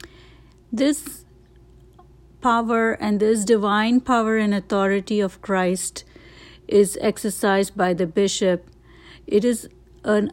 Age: 60-79